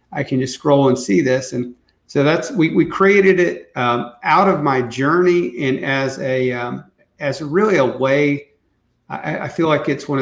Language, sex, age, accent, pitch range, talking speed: English, male, 40-59, American, 125-145 Hz, 195 wpm